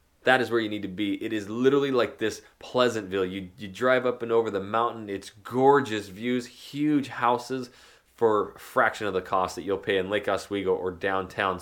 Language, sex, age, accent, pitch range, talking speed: English, male, 20-39, American, 100-120 Hz, 205 wpm